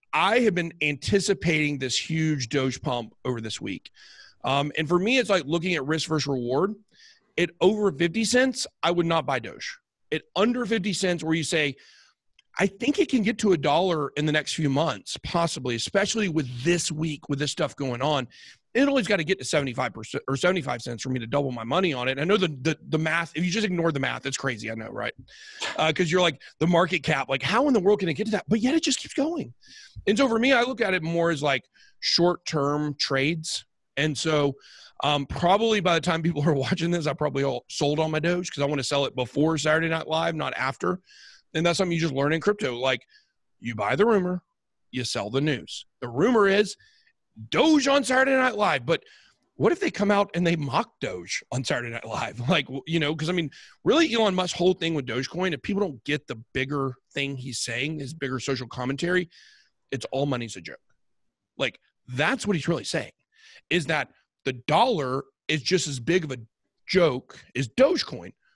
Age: 40-59